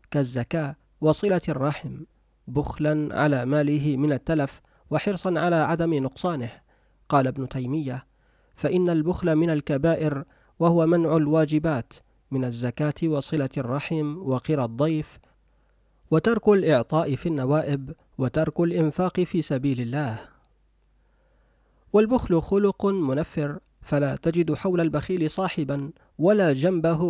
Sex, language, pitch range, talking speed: male, Arabic, 145-170 Hz, 105 wpm